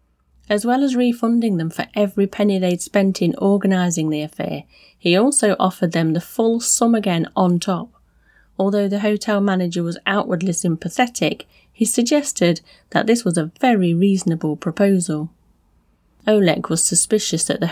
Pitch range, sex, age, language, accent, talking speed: 160-205 Hz, female, 30-49, English, British, 150 wpm